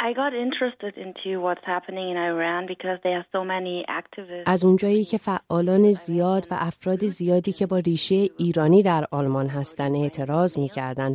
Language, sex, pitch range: Persian, female, 155-195 Hz